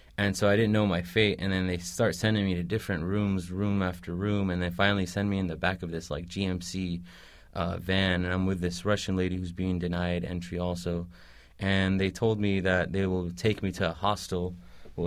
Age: 30-49